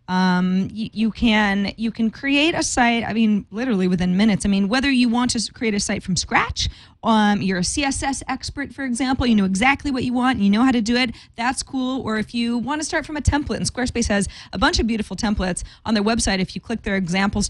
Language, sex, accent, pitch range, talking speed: English, female, American, 190-245 Hz, 245 wpm